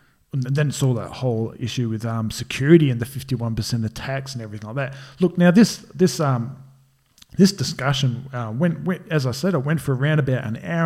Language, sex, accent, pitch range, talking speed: English, male, Australian, 120-145 Hz, 210 wpm